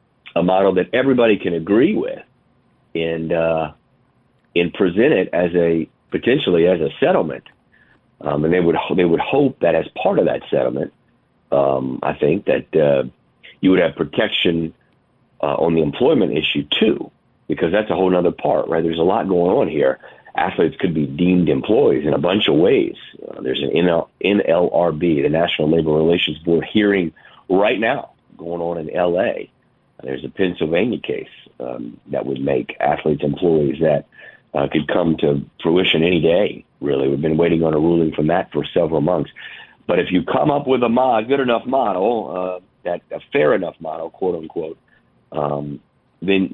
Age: 50-69